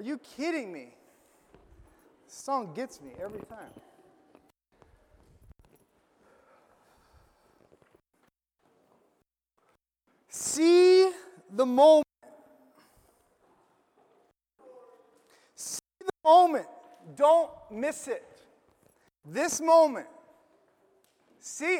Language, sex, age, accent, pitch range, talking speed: English, male, 30-49, American, 250-310 Hz, 60 wpm